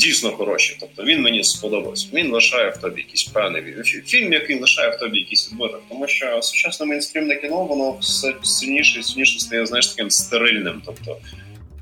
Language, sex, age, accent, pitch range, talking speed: Russian, male, 20-39, native, 110-180 Hz, 175 wpm